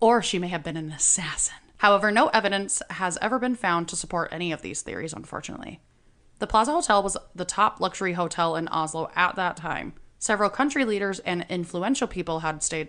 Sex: female